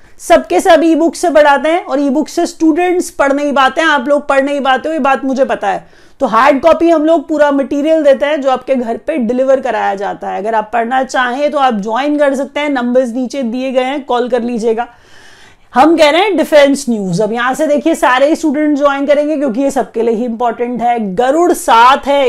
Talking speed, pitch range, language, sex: 185 wpm, 245-305 Hz, English, female